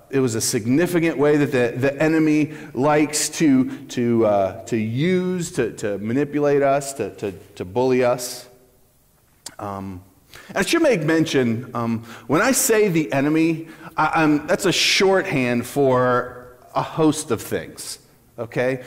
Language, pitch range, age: English, 120-155 Hz, 30-49